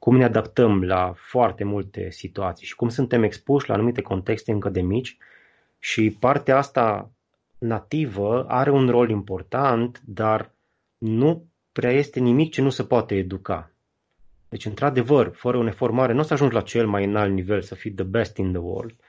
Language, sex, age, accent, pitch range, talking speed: Romanian, male, 20-39, native, 100-120 Hz, 175 wpm